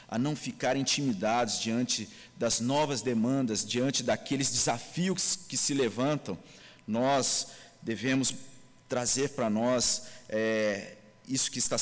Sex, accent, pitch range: male, Brazilian, 115-145 Hz